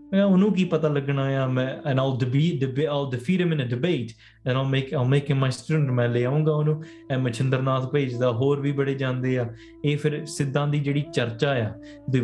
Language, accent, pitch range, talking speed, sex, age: English, Indian, 110-130 Hz, 135 wpm, male, 20-39